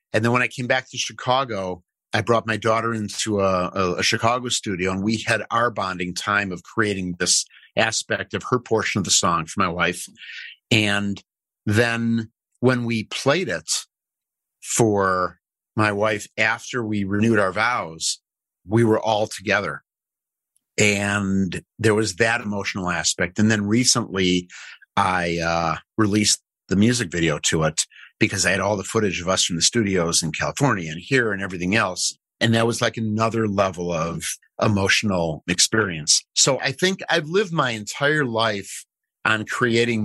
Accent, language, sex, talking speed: American, English, male, 160 wpm